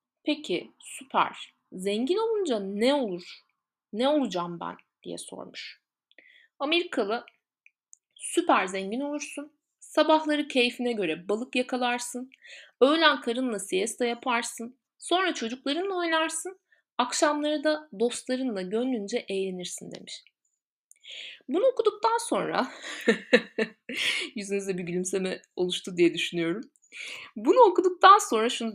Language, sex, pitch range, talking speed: Turkish, female, 215-320 Hz, 95 wpm